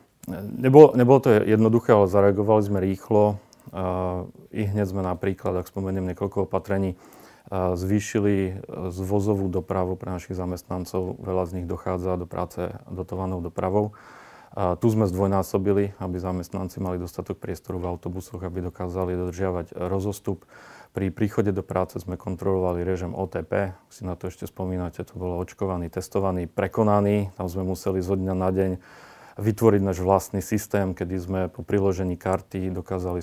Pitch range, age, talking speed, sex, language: 90-100 Hz, 40-59, 145 wpm, male, Slovak